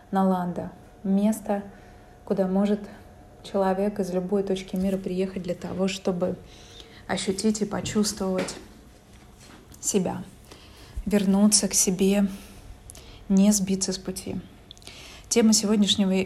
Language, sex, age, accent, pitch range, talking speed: Russian, female, 20-39, native, 185-210 Hz, 105 wpm